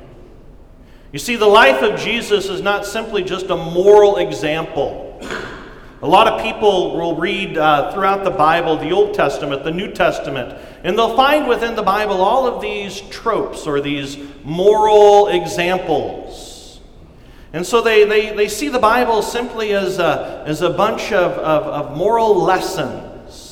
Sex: male